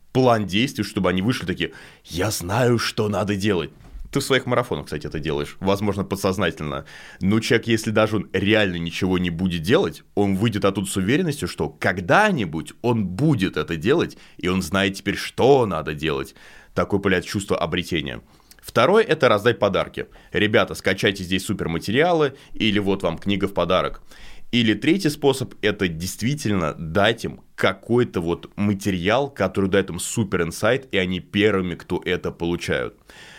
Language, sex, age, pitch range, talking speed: Russian, male, 20-39, 85-110 Hz, 160 wpm